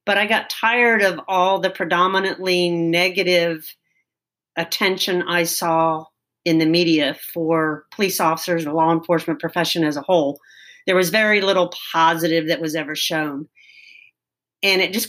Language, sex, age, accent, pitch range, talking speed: English, female, 40-59, American, 160-185 Hz, 150 wpm